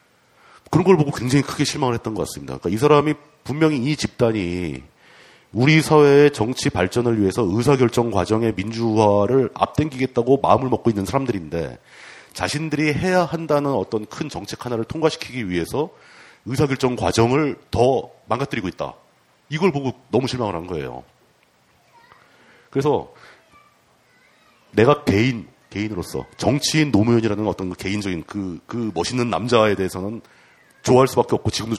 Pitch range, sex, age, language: 100-145 Hz, male, 40-59, Korean